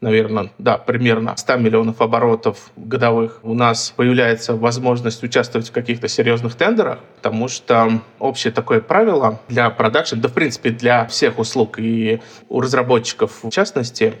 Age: 20-39